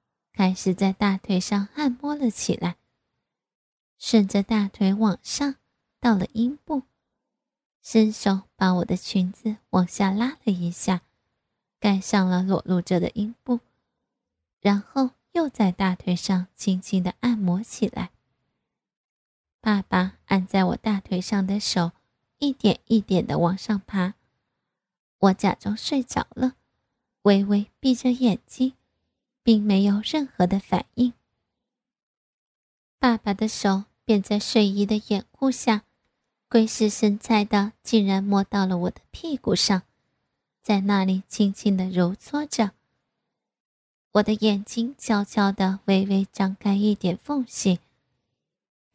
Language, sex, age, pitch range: Chinese, female, 20-39, 190-230 Hz